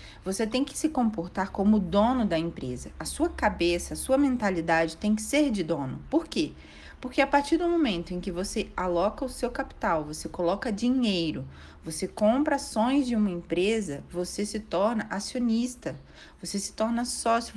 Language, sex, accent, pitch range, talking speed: Portuguese, female, Brazilian, 185-255 Hz, 175 wpm